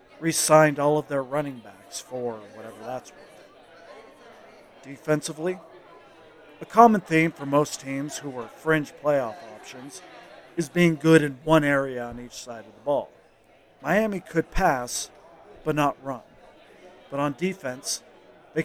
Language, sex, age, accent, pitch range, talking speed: English, male, 50-69, American, 130-165 Hz, 140 wpm